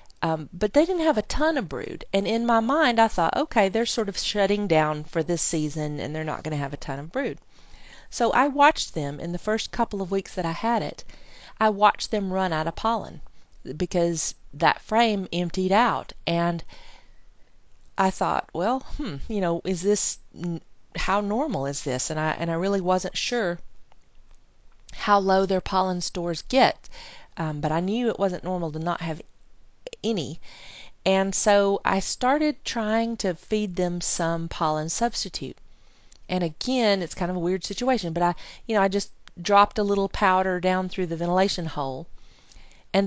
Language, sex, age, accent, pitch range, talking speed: English, female, 40-59, American, 165-220 Hz, 185 wpm